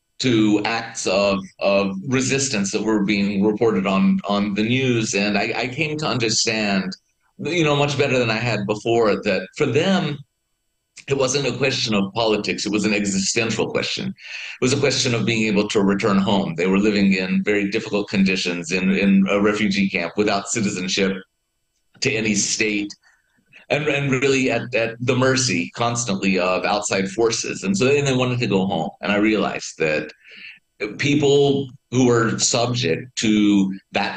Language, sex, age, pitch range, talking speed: Greek, male, 30-49, 100-120 Hz, 170 wpm